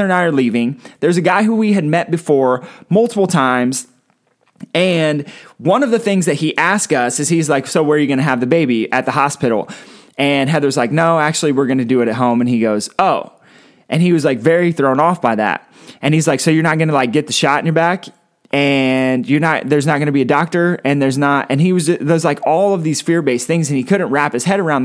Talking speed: 250 wpm